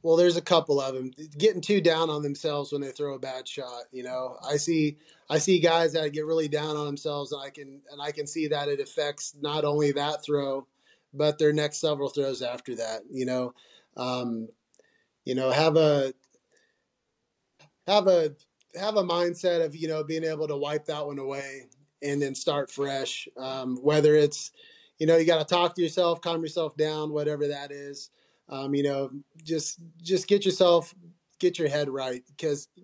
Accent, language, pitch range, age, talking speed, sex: American, English, 135-165 Hz, 30-49, 195 wpm, male